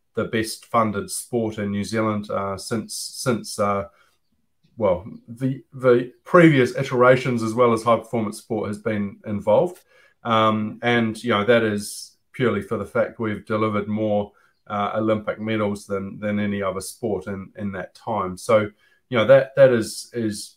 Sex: male